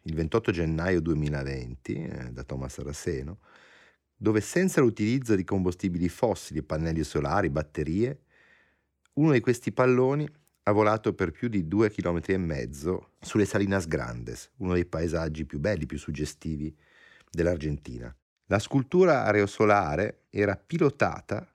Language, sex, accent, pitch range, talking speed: Italian, male, native, 75-105 Hz, 130 wpm